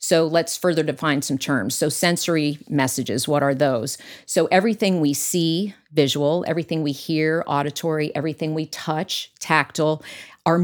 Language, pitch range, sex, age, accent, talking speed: English, 145-180 Hz, female, 40-59, American, 145 wpm